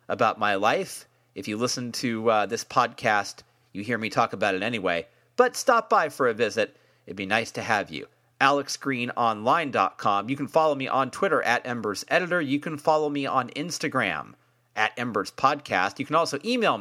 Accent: American